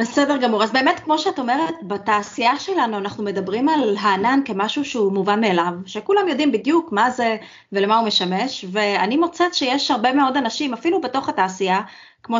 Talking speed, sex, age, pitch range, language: 170 wpm, female, 20-39, 200-280 Hz, Hebrew